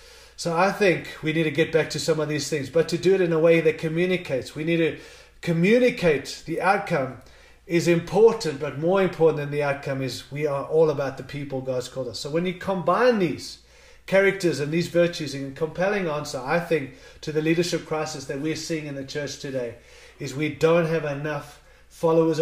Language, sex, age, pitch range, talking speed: English, male, 30-49, 150-185 Hz, 205 wpm